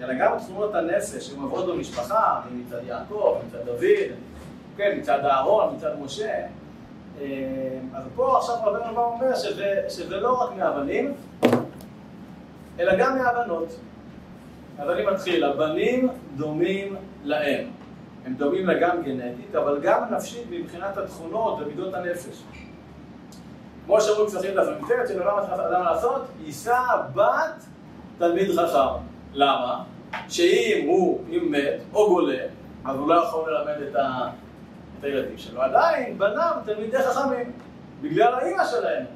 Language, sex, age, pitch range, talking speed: Hebrew, male, 40-59, 165-265 Hz, 120 wpm